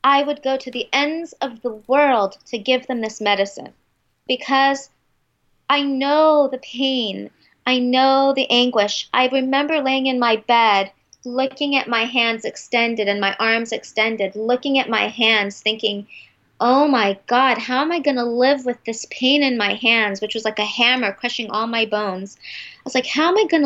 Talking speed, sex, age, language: 190 wpm, female, 30-49, English